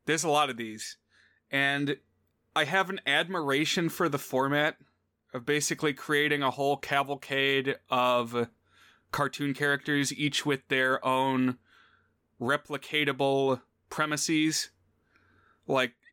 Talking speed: 110 wpm